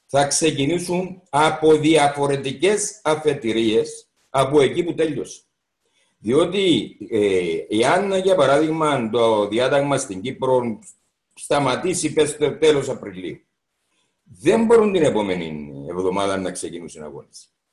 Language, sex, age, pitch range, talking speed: Greek, male, 60-79, 135-205 Hz, 100 wpm